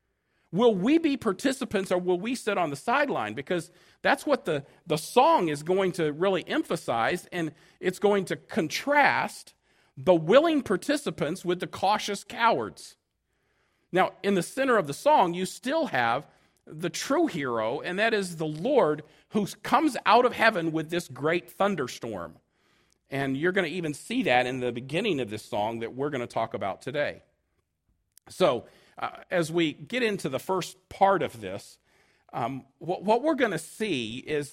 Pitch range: 155-215 Hz